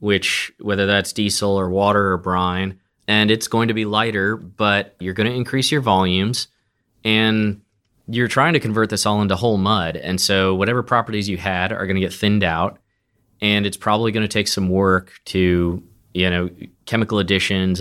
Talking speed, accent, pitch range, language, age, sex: 190 wpm, American, 90-105 Hz, English, 20-39, male